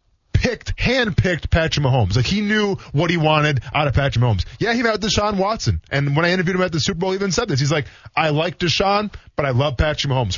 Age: 20-39